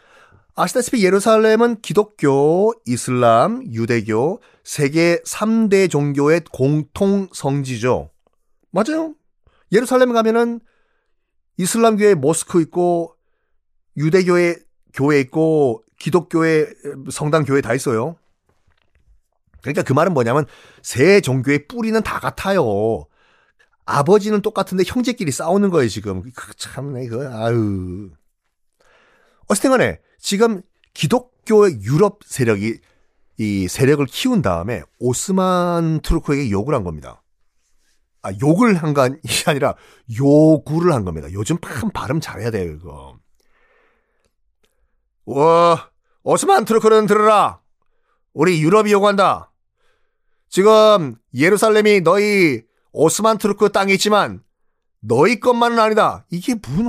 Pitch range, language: 130-210 Hz, Korean